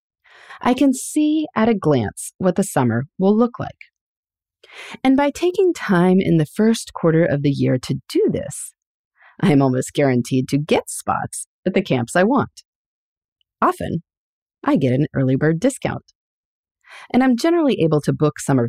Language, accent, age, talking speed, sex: English, American, 30-49, 165 wpm, female